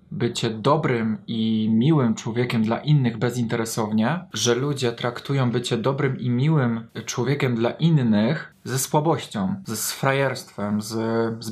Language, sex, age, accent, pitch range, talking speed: Polish, male, 20-39, native, 110-135 Hz, 125 wpm